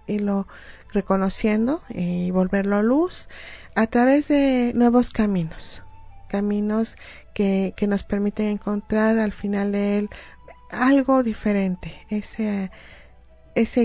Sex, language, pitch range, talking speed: female, Spanish, 190-225 Hz, 110 wpm